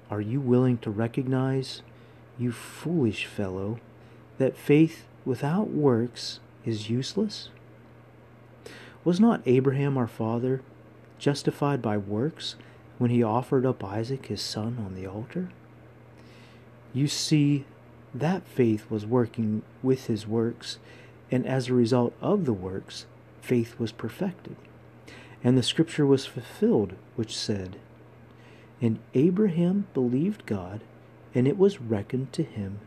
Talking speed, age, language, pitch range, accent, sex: 125 wpm, 40-59, English, 115-140 Hz, American, male